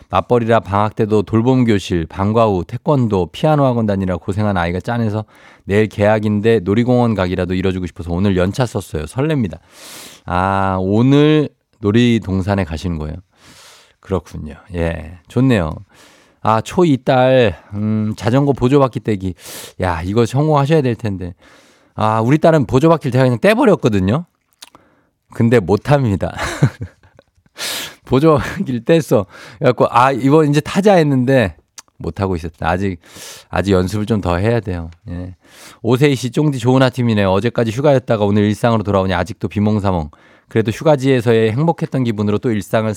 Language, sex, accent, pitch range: Korean, male, native, 95-125 Hz